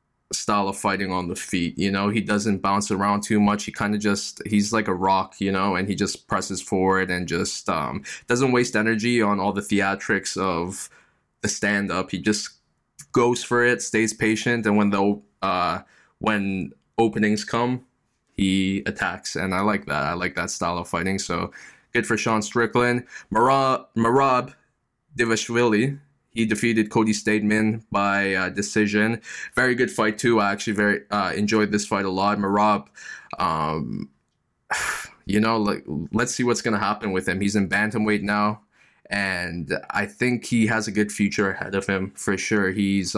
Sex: male